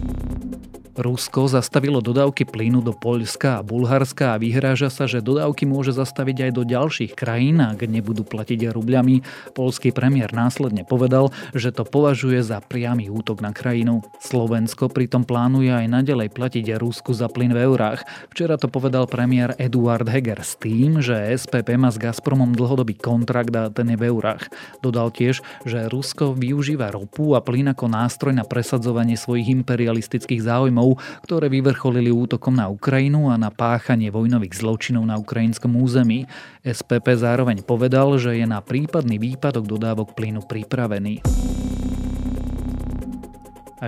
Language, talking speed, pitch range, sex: Slovak, 145 wpm, 110-130 Hz, male